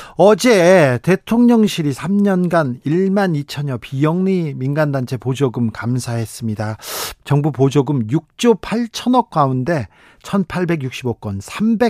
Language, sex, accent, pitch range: Korean, male, native, 135-185 Hz